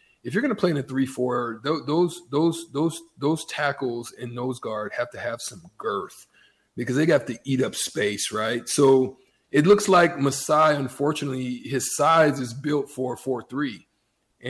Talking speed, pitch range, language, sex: 165 wpm, 120-145 Hz, English, male